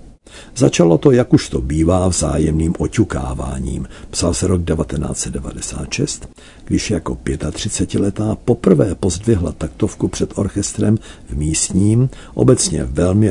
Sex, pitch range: male, 75-105 Hz